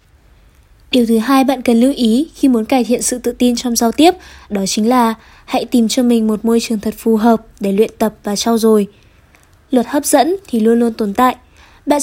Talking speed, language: 225 wpm, Vietnamese